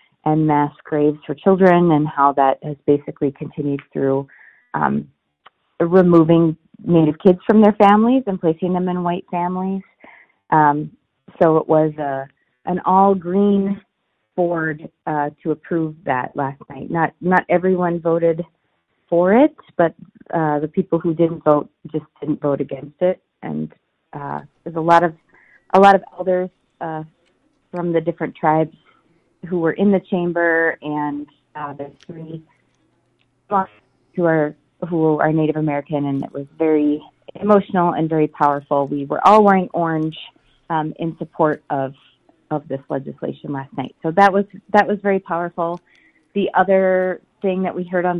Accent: American